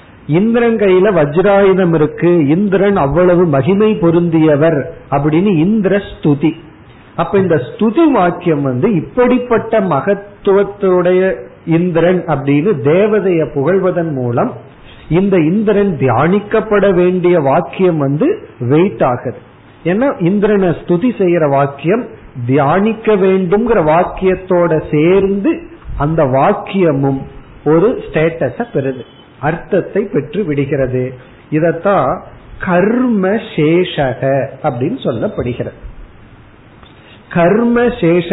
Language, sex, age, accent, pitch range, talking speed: Tamil, male, 50-69, native, 145-200 Hz, 60 wpm